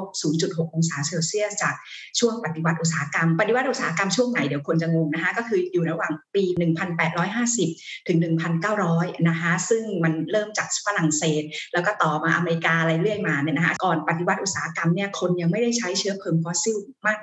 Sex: female